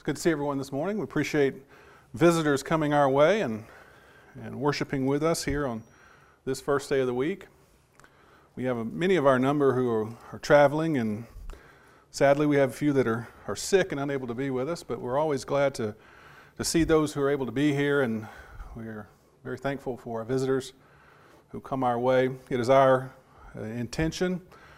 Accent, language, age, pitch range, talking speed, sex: American, English, 40-59, 125-150 Hz, 195 wpm, male